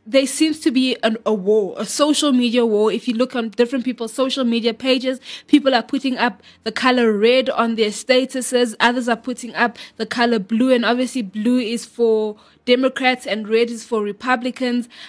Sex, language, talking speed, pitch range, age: female, English, 185 wpm, 225-265 Hz, 20-39